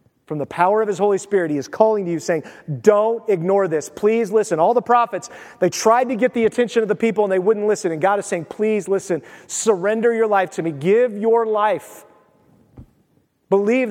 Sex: male